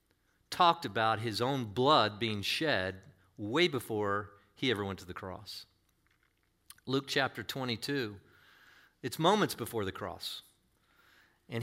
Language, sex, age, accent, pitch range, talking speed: English, male, 50-69, American, 105-155 Hz, 125 wpm